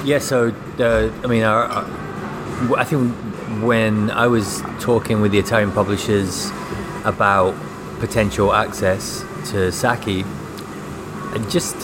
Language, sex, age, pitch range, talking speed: English, male, 30-49, 95-110 Hz, 115 wpm